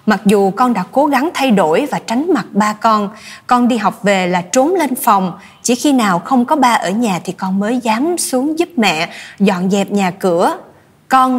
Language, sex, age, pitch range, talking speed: Vietnamese, female, 20-39, 195-245 Hz, 215 wpm